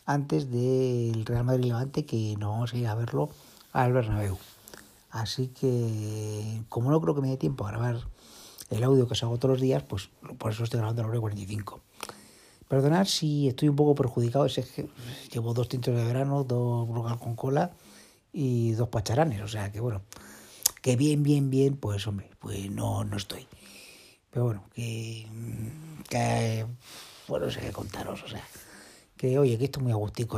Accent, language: Spanish, Spanish